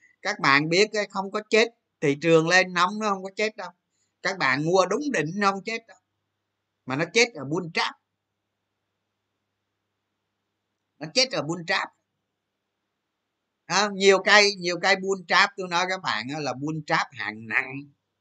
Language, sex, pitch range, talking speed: Vietnamese, male, 105-175 Hz, 165 wpm